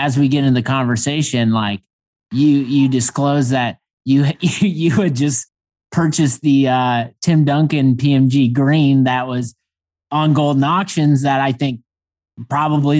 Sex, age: male, 30-49